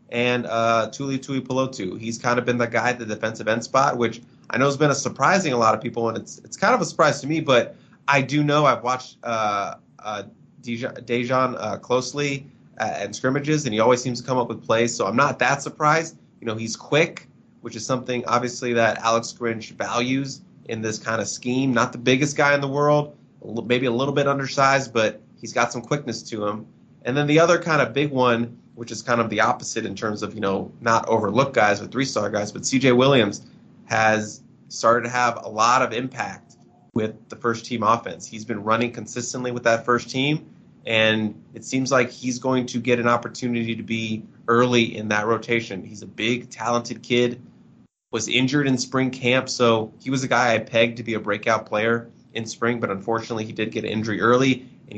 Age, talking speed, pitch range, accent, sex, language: 20-39, 215 wpm, 115-130 Hz, American, male, English